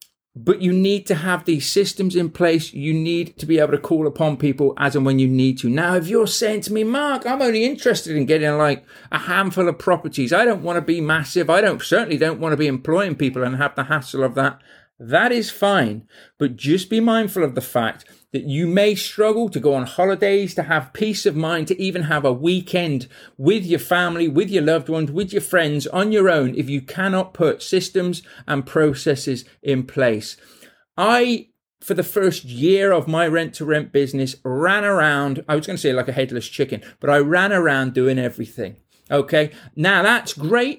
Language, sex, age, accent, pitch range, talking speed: English, male, 40-59, British, 140-185 Hz, 210 wpm